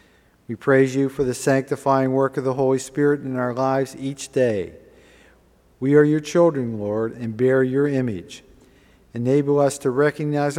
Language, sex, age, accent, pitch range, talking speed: English, male, 50-69, American, 125-140 Hz, 165 wpm